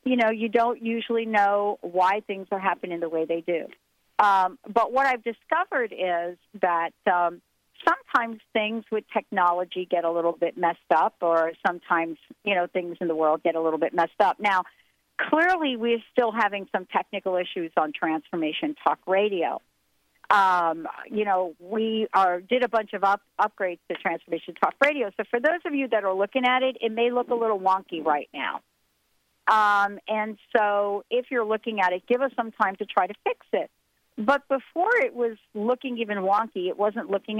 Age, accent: 50-69, American